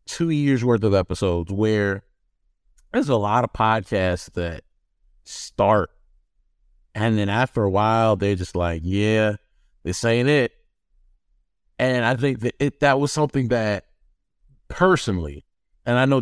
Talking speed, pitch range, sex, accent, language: 140 wpm, 95-130 Hz, male, American, English